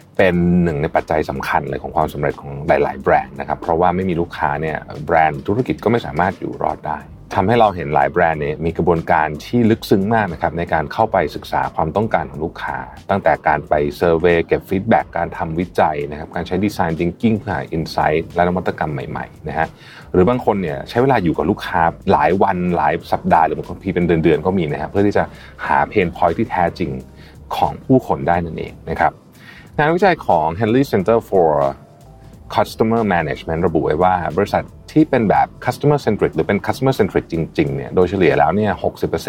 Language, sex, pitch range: Thai, male, 80-110 Hz